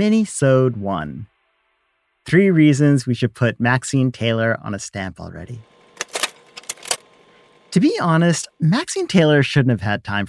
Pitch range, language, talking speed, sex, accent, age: 110-175 Hz, English, 130 wpm, male, American, 40-59